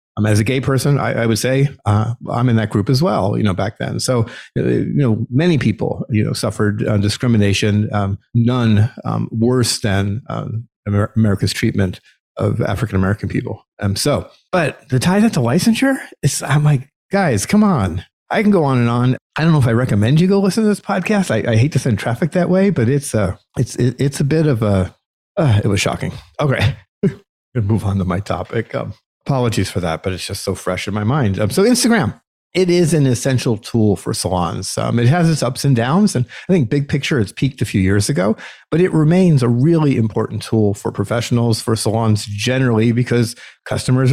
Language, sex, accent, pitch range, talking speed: English, male, American, 105-145 Hz, 210 wpm